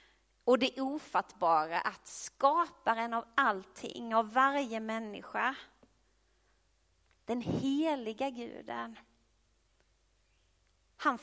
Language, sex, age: Swedish, female, 30-49